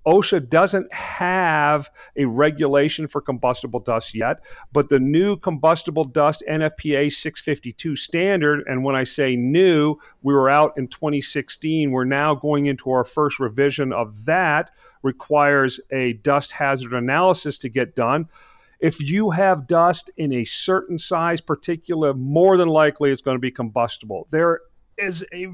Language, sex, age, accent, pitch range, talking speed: English, male, 40-59, American, 135-165 Hz, 150 wpm